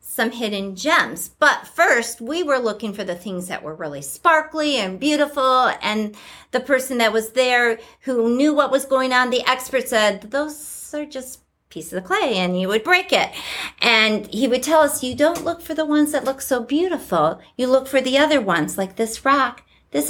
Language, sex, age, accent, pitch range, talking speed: English, female, 50-69, American, 210-270 Hz, 205 wpm